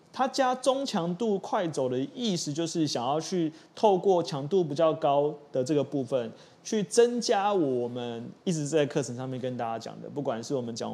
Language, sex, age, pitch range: Chinese, male, 20-39, 125-175 Hz